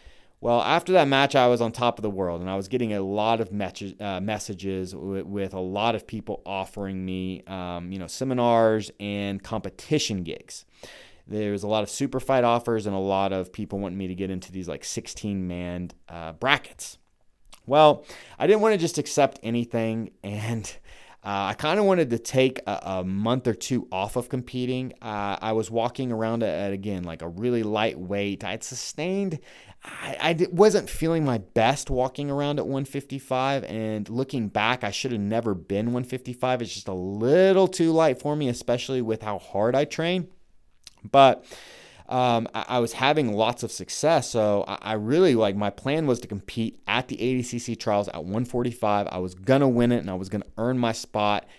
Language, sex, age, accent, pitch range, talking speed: English, male, 30-49, American, 100-130 Hz, 200 wpm